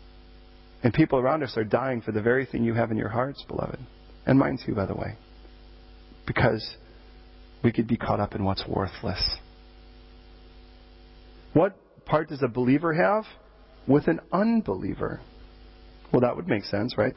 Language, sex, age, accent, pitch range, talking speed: English, male, 40-59, American, 85-135 Hz, 160 wpm